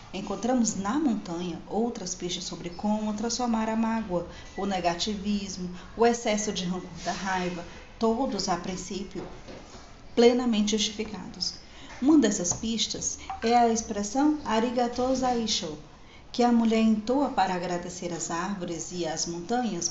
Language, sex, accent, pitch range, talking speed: Portuguese, female, Brazilian, 190-255 Hz, 125 wpm